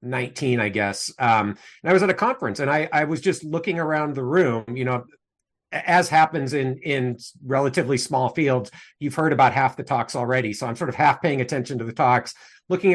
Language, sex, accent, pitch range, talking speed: English, male, American, 125-160 Hz, 215 wpm